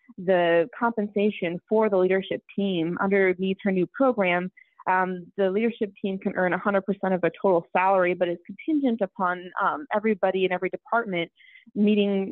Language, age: English, 20-39